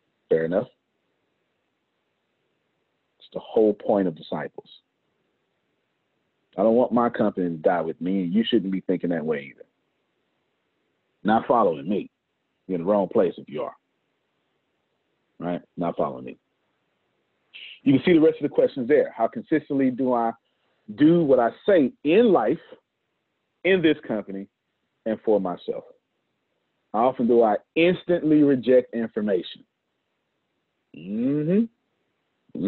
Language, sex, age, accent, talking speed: English, male, 40-59, American, 135 wpm